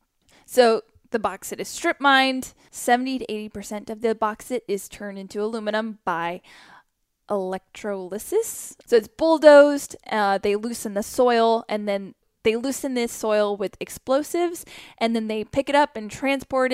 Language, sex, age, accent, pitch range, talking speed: English, female, 10-29, American, 210-260 Hz, 150 wpm